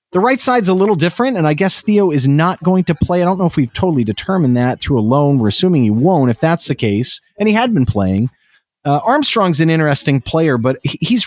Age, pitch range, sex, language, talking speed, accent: 30-49, 120-165 Hz, male, English, 245 wpm, American